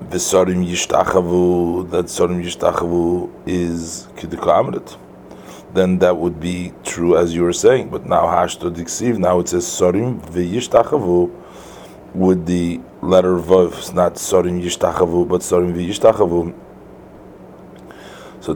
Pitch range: 85-90 Hz